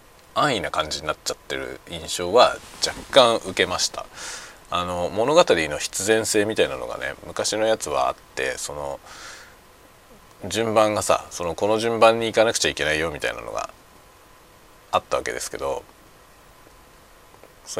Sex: male